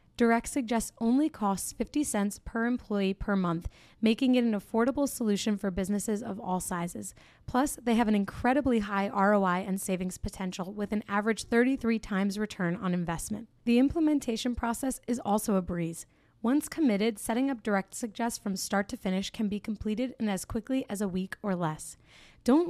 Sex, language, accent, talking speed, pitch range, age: female, English, American, 175 wpm, 195-235 Hz, 20-39